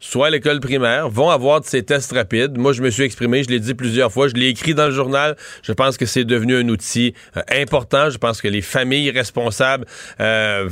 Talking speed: 235 wpm